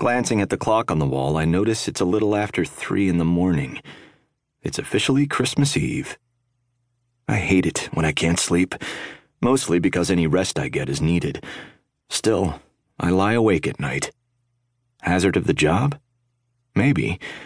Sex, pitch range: male, 85-120 Hz